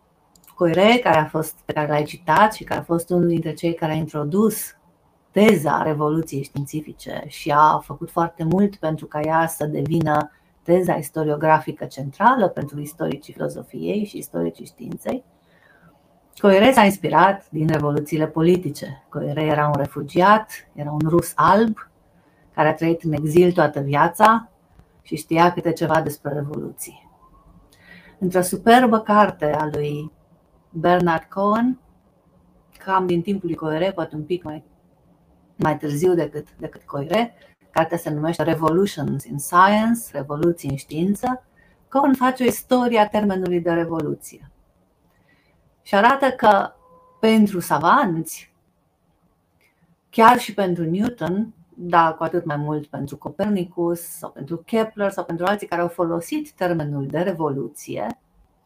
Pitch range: 155-195 Hz